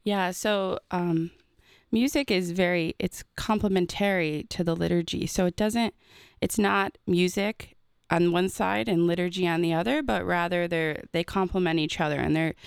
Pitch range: 155-185 Hz